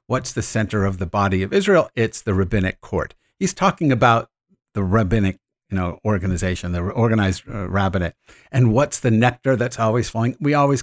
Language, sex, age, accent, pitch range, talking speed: English, male, 60-79, American, 95-130 Hz, 185 wpm